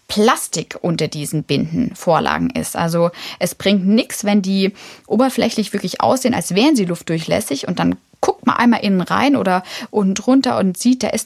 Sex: female